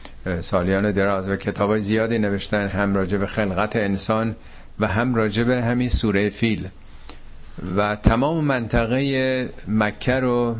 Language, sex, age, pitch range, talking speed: Persian, male, 50-69, 95-120 Hz, 120 wpm